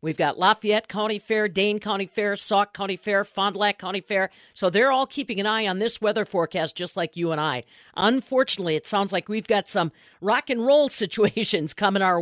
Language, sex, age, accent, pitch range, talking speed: English, female, 50-69, American, 175-225 Hz, 215 wpm